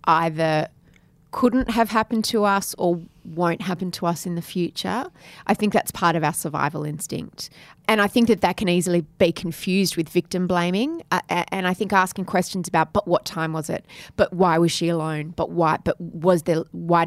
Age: 20-39